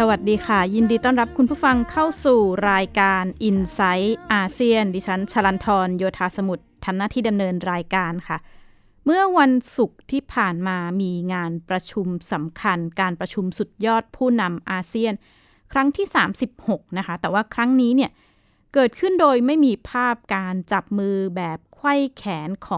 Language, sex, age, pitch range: Thai, female, 20-39, 185-245 Hz